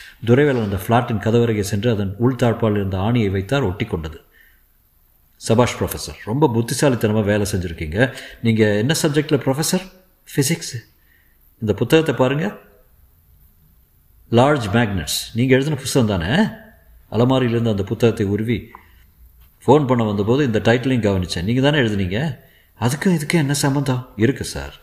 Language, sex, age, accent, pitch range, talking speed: Tamil, male, 50-69, native, 95-130 Hz, 95 wpm